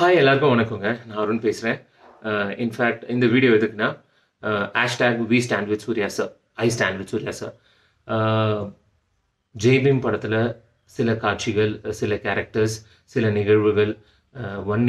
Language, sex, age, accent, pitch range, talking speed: Tamil, male, 30-49, native, 105-120 Hz, 120 wpm